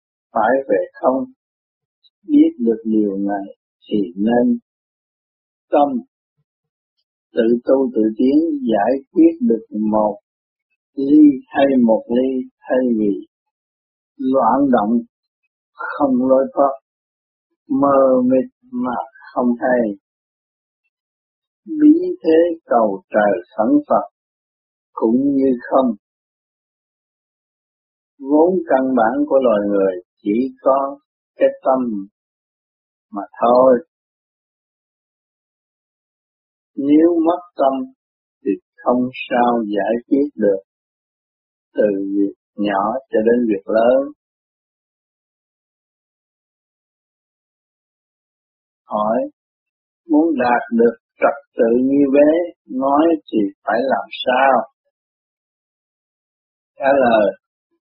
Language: Vietnamese